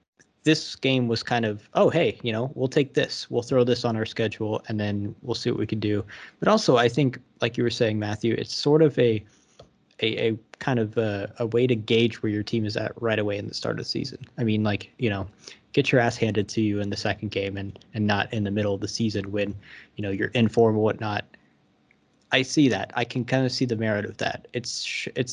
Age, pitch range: 20-39, 105-120 Hz